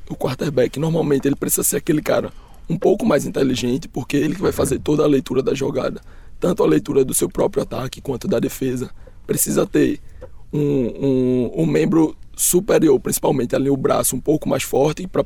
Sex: male